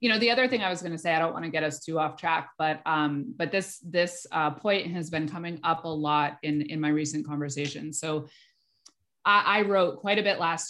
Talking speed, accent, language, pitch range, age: 250 wpm, American, English, 150-175 Hz, 30-49